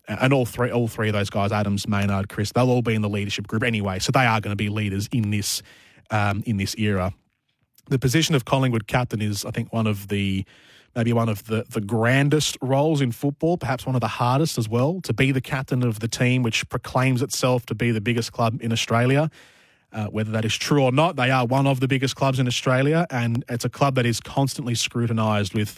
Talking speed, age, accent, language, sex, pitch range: 235 wpm, 20-39, Australian, English, male, 110-130 Hz